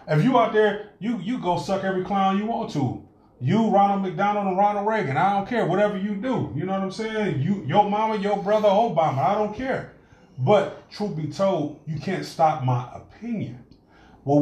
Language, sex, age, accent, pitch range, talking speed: English, male, 30-49, American, 125-185 Hz, 205 wpm